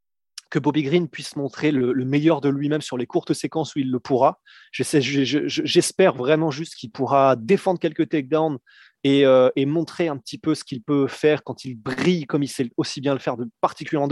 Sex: male